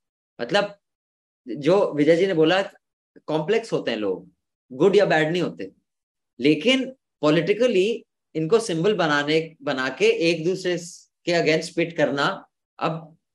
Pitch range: 155-220 Hz